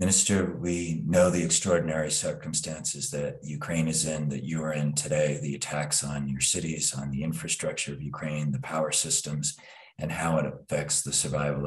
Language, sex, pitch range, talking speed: English, male, 70-75 Hz, 175 wpm